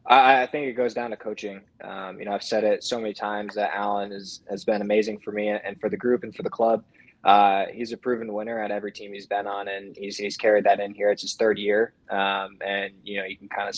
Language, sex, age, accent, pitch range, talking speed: English, male, 20-39, American, 100-115 Hz, 270 wpm